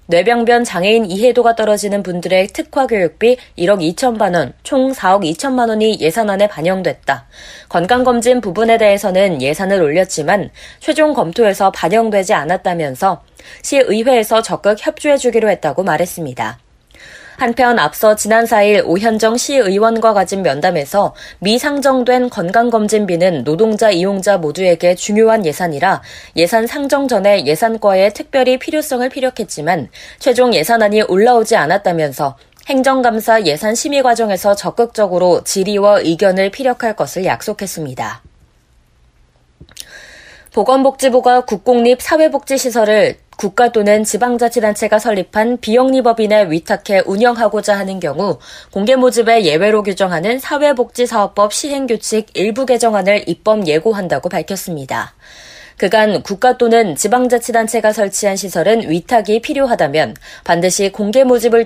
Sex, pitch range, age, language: female, 190-240 Hz, 20-39, Korean